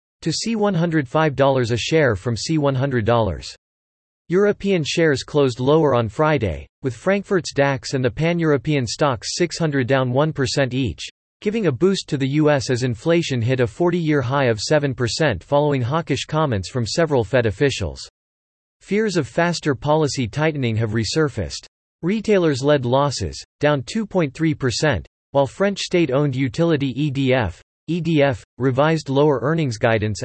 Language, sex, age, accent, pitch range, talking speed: English, male, 40-59, American, 125-160 Hz, 130 wpm